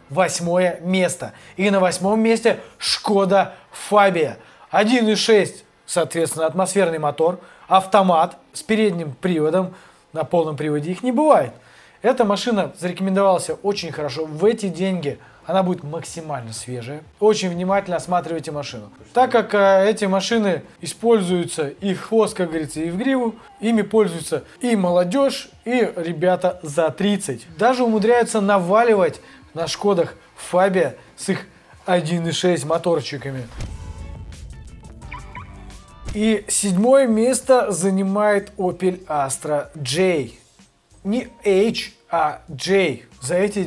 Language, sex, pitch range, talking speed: Russian, male, 160-210 Hz, 115 wpm